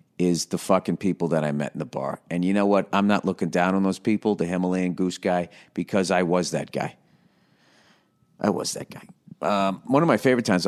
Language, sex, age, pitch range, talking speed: English, male, 50-69, 90-120 Hz, 225 wpm